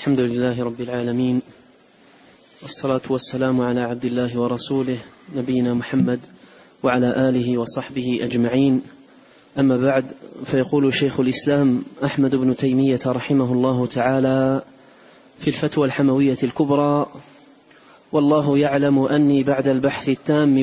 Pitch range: 135-155 Hz